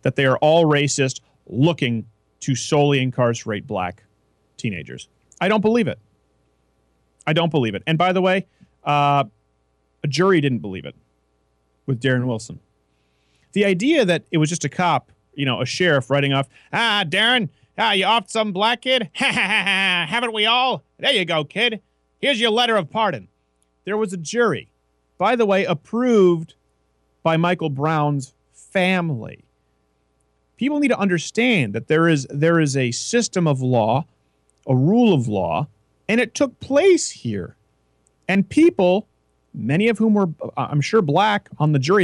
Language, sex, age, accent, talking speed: English, male, 40-59, American, 165 wpm